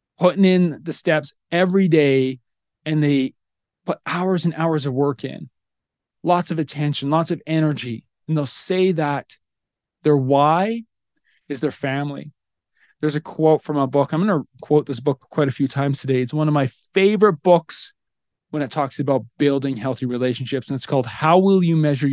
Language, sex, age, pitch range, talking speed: English, male, 20-39, 130-160 Hz, 180 wpm